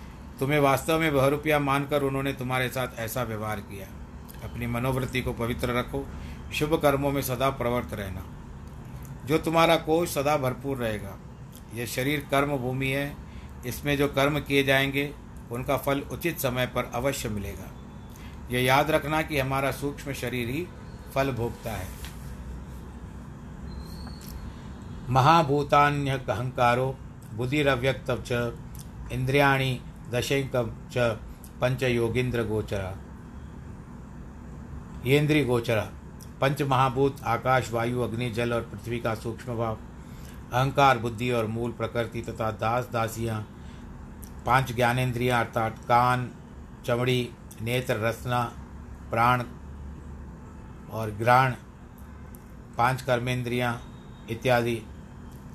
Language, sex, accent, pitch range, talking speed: Hindi, male, native, 110-135 Hz, 105 wpm